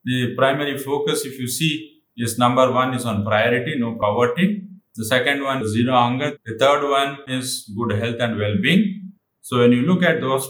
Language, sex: English, male